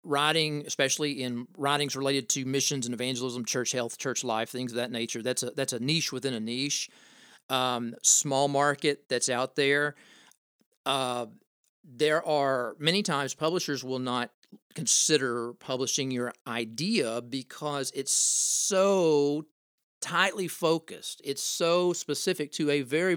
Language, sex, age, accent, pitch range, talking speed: English, male, 40-59, American, 125-165 Hz, 140 wpm